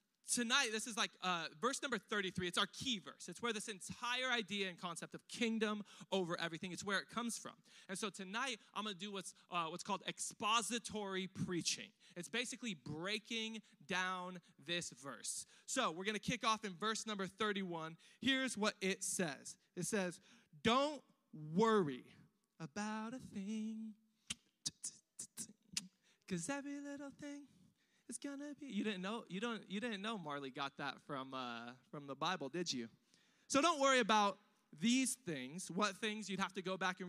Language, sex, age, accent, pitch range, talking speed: English, male, 20-39, American, 180-225 Hz, 175 wpm